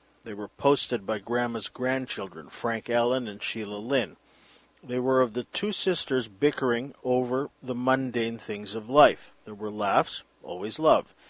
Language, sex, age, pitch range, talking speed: English, male, 50-69, 115-140 Hz, 155 wpm